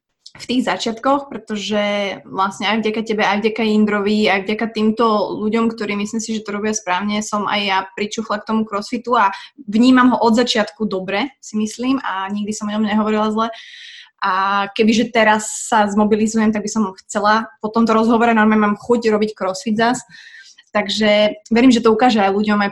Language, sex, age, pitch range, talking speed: Slovak, female, 20-39, 195-220 Hz, 185 wpm